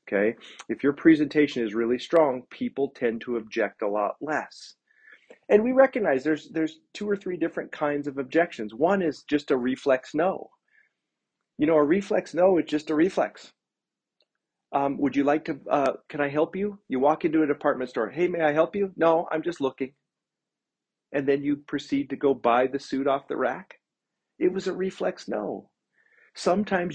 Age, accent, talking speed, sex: 40-59, American, 185 wpm, male